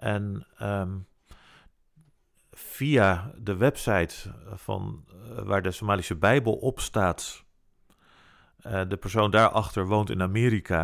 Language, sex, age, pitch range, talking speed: Dutch, male, 40-59, 100-120 Hz, 100 wpm